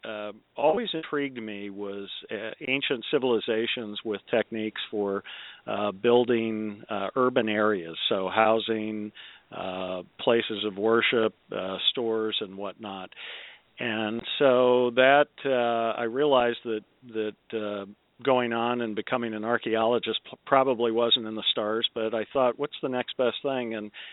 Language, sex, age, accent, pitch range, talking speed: English, male, 50-69, American, 105-120 Hz, 135 wpm